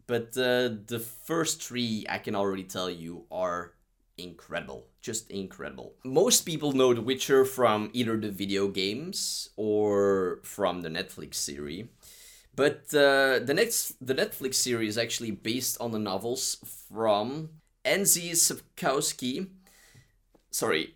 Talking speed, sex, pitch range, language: 125 wpm, male, 100-130 Hz, English